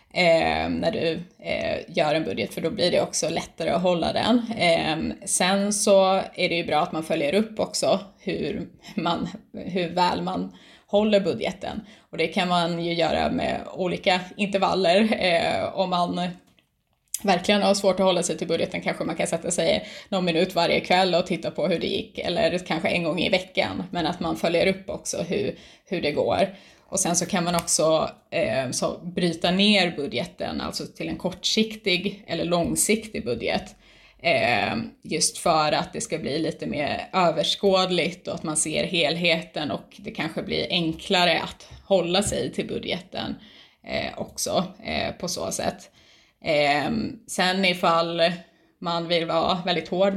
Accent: native